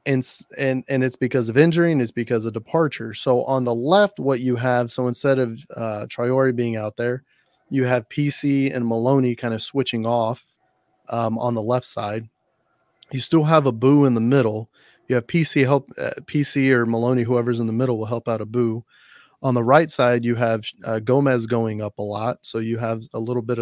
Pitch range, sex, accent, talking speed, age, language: 115-135 Hz, male, American, 215 wpm, 30-49, English